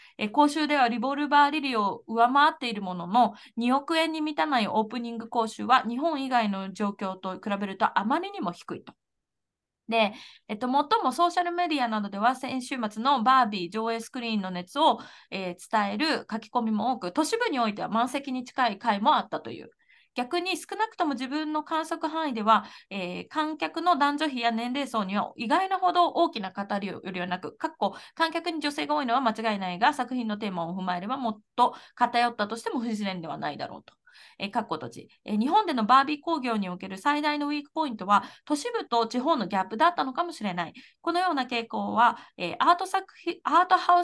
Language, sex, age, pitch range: Japanese, female, 20-39, 215-305 Hz